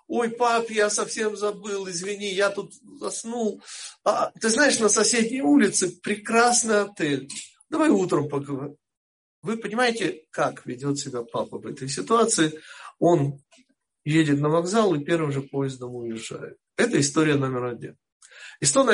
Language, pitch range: Russian, 140-215 Hz